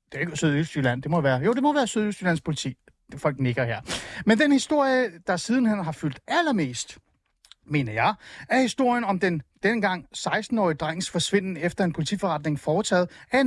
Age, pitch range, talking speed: 30-49, 150-235 Hz, 165 wpm